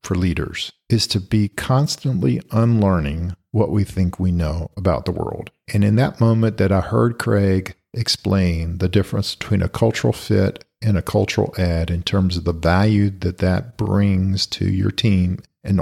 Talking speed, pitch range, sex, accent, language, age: 175 wpm, 90-115 Hz, male, American, English, 50-69